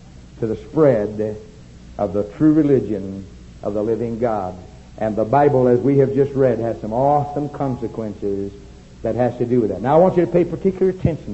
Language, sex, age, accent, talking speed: English, male, 60-79, American, 195 wpm